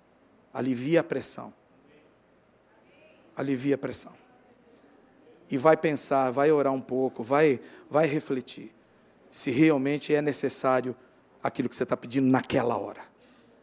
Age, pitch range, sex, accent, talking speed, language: 50-69, 135-175 Hz, male, Brazilian, 120 wpm, Portuguese